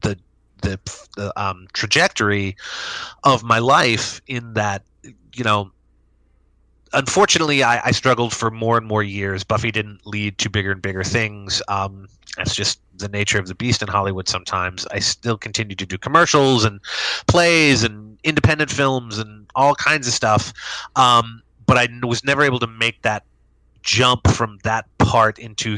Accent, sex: American, male